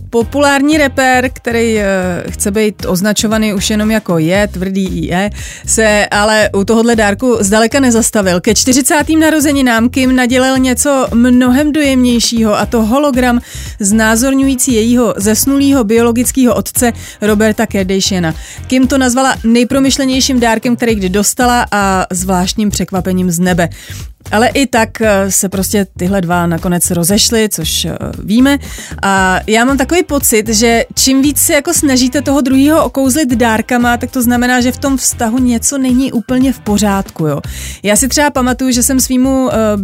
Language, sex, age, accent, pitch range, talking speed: Czech, female, 30-49, native, 205-260 Hz, 150 wpm